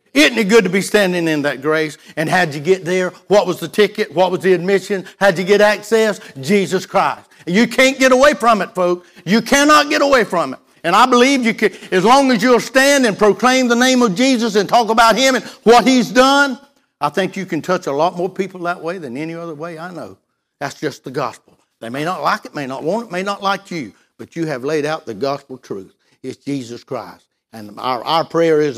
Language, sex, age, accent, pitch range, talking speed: English, male, 60-79, American, 155-225 Hz, 240 wpm